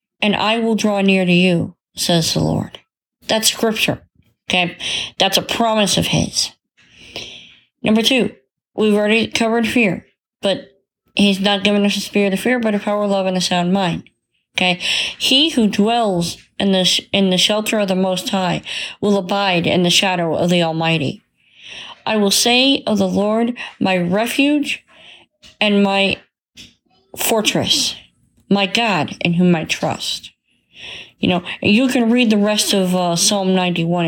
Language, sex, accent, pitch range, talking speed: English, female, American, 180-225 Hz, 160 wpm